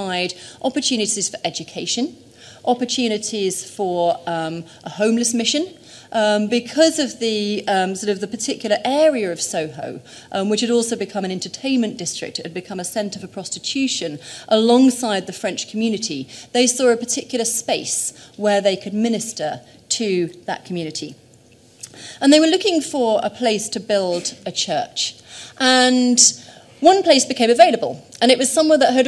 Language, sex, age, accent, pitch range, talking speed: English, female, 30-49, British, 185-250 Hz, 155 wpm